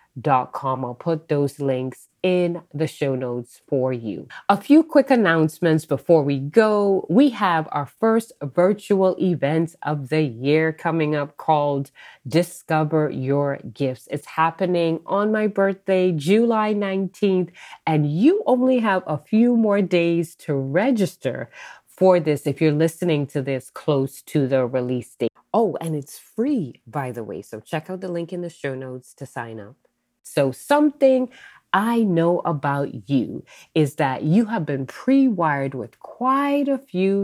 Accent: American